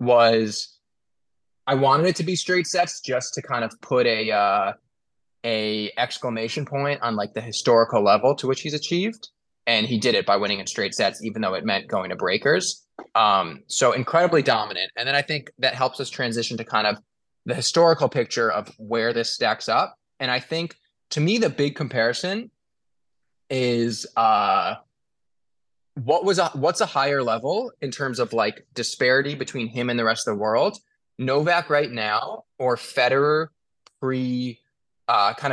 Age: 20-39